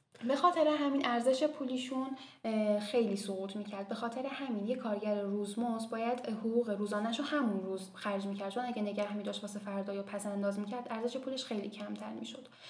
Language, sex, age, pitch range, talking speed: Persian, female, 10-29, 205-250 Hz, 180 wpm